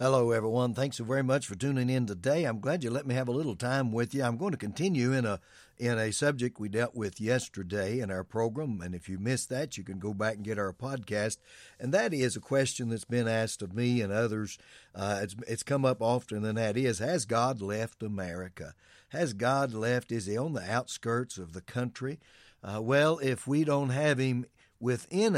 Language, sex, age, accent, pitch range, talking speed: English, male, 60-79, American, 110-130 Hz, 225 wpm